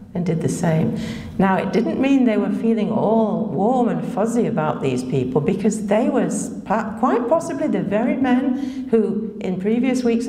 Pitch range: 170-225 Hz